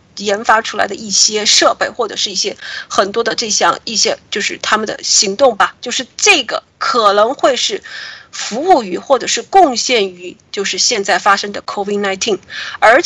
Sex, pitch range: female, 210-315 Hz